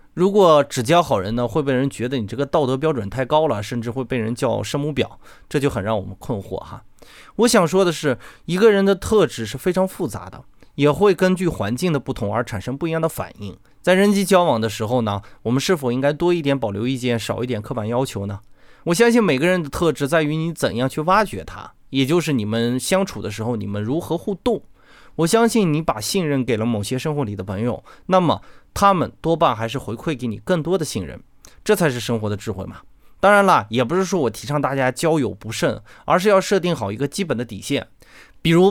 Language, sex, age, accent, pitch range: Chinese, male, 20-39, native, 110-165 Hz